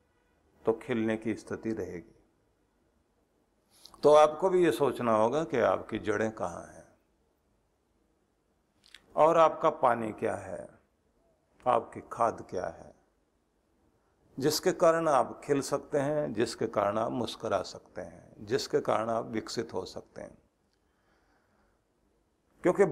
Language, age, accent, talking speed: Hindi, 50-69, native, 120 wpm